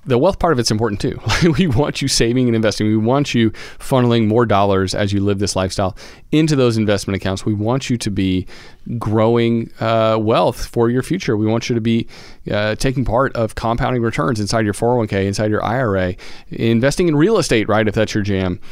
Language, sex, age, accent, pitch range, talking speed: English, male, 40-59, American, 105-145 Hz, 210 wpm